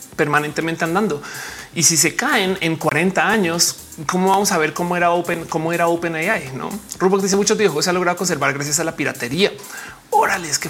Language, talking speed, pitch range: Spanish, 200 wpm, 155-220 Hz